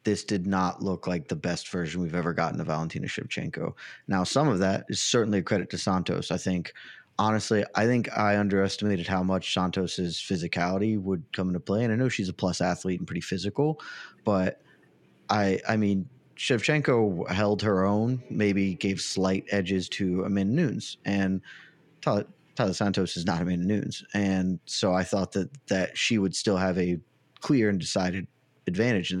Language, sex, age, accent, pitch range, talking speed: English, male, 30-49, American, 95-115 Hz, 180 wpm